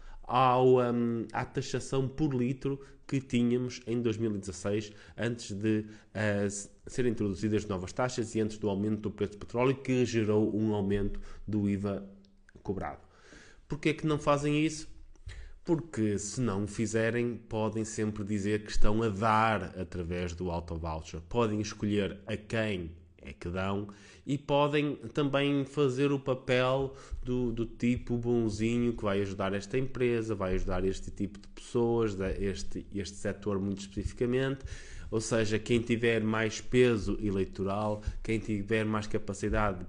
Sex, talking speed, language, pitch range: male, 145 wpm, Portuguese, 100-130 Hz